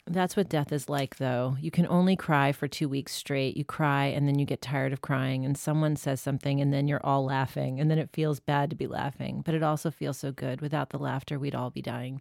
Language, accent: English, American